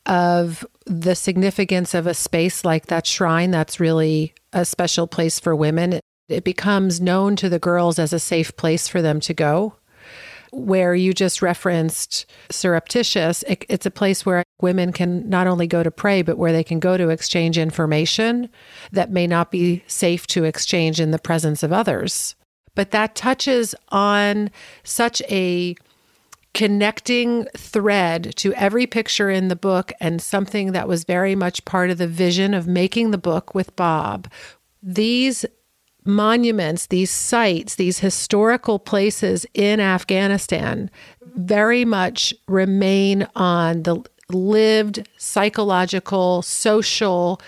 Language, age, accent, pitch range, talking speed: English, 40-59, American, 170-205 Hz, 145 wpm